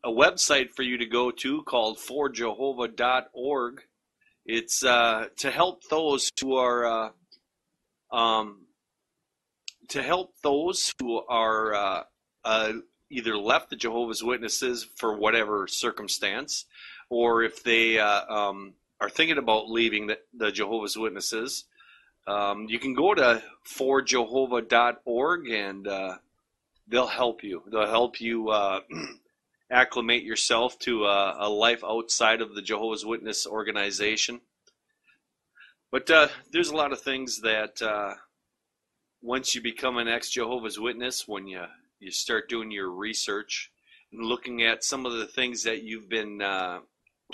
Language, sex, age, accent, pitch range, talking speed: English, male, 40-59, American, 110-125 Hz, 135 wpm